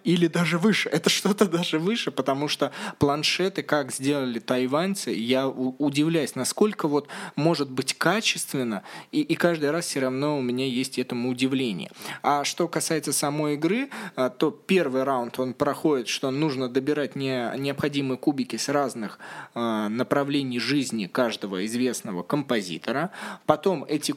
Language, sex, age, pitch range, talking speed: Russian, male, 20-39, 125-165 Hz, 135 wpm